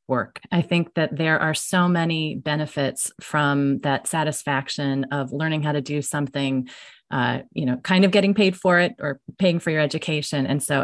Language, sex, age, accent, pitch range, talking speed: English, female, 30-49, American, 140-170 Hz, 190 wpm